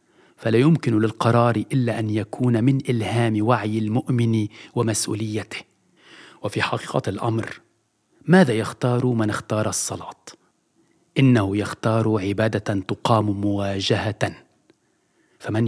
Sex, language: male, French